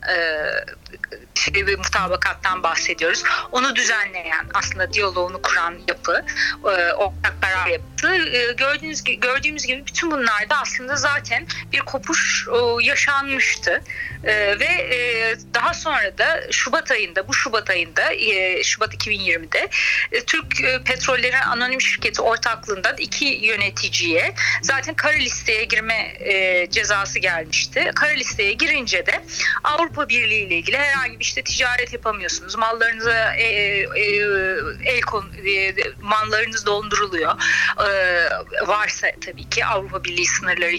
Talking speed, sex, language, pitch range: 105 wpm, female, Turkish, 205-300 Hz